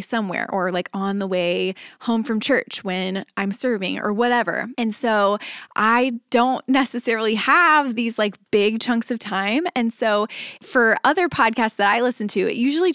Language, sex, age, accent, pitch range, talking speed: English, female, 20-39, American, 195-250 Hz, 170 wpm